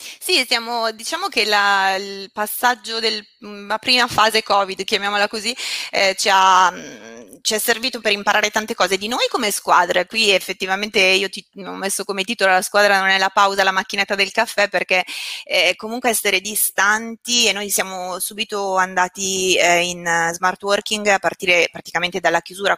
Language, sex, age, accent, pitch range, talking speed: Italian, female, 20-39, native, 180-215 Hz, 170 wpm